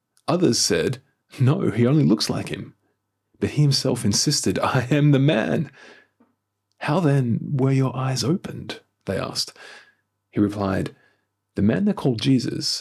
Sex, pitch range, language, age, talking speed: male, 100-130 Hz, English, 30-49, 145 wpm